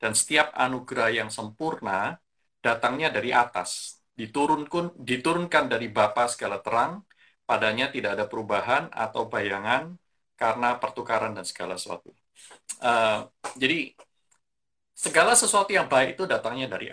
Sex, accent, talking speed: male, native, 120 wpm